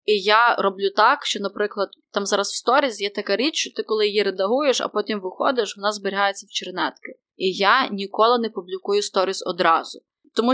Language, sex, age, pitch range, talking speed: Ukrainian, female, 20-39, 200-255 Hz, 190 wpm